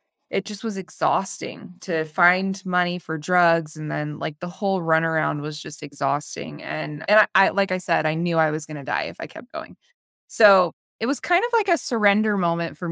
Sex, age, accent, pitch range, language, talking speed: female, 20-39, American, 170-210 Hz, English, 210 wpm